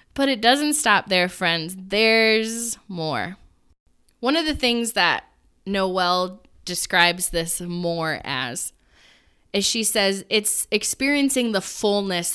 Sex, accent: female, American